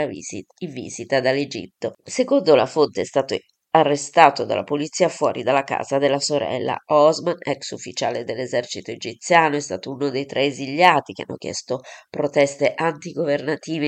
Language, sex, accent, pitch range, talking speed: Italian, female, native, 135-155 Hz, 140 wpm